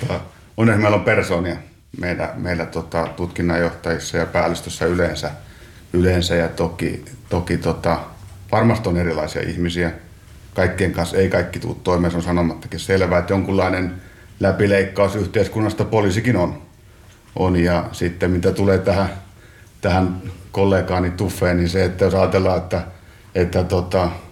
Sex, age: male, 50-69